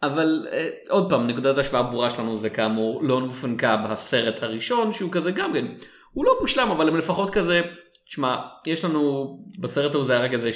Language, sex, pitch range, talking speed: Hebrew, male, 125-180 Hz, 190 wpm